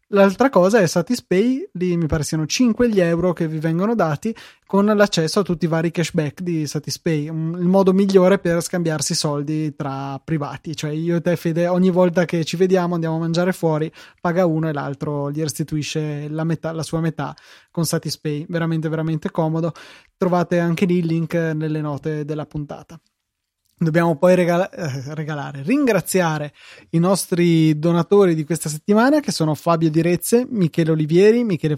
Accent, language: native, Italian